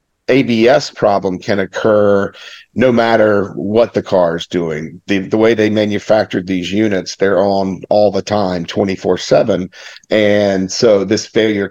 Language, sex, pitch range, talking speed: English, male, 95-115 Hz, 150 wpm